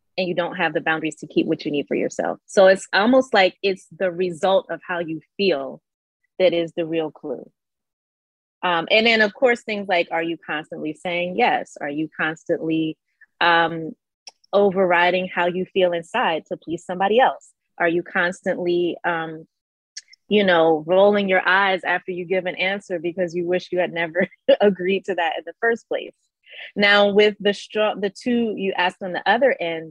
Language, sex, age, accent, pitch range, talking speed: English, female, 20-39, American, 170-205 Hz, 185 wpm